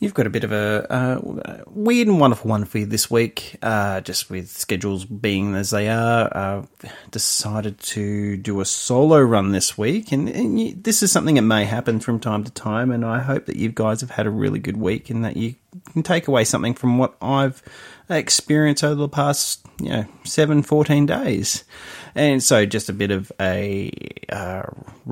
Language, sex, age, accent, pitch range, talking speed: English, male, 30-49, Australian, 105-135 Hz, 200 wpm